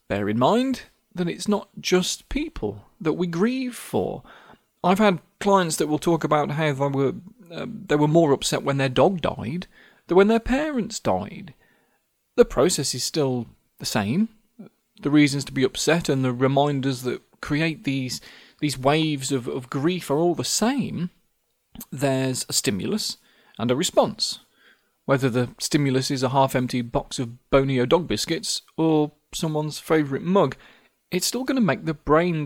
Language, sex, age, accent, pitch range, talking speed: English, male, 30-49, British, 135-195 Hz, 165 wpm